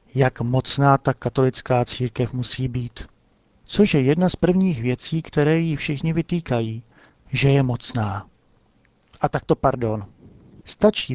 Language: Czech